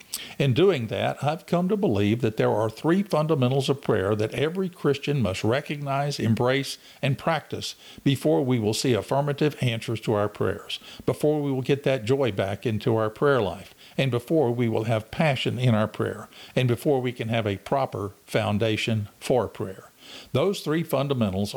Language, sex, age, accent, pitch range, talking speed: English, male, 50-69, American, 110-145 Hz, 180 wpm